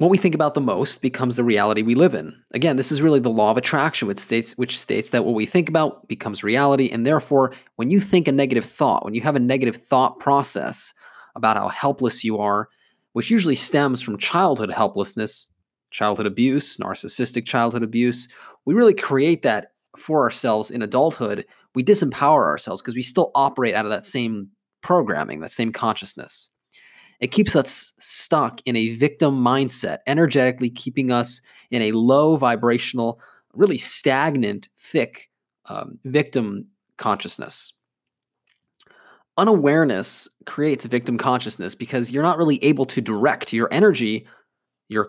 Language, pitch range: English, 115-140 Hz